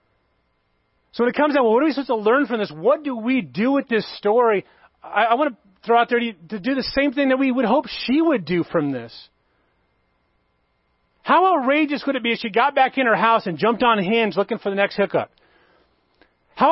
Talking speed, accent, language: 235 wpm, American, English